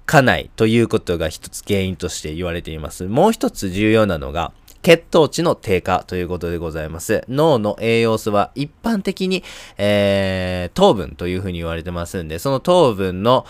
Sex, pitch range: male, 90-130 Hz